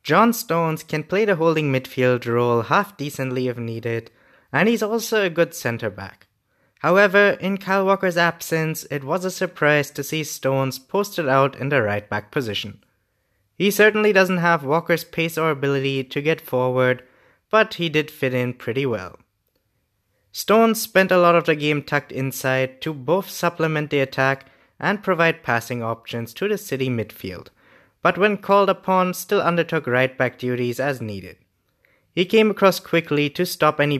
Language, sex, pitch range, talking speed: English, male, 125-175 Hz, 160 wpm